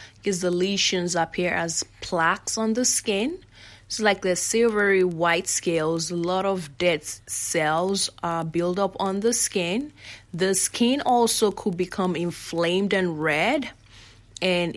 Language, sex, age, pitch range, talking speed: English, female, 20-39, 160-195 Hz, 145 wpm